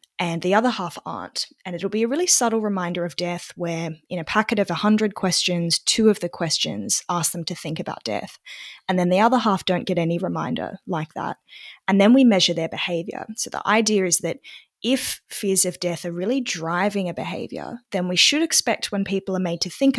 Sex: female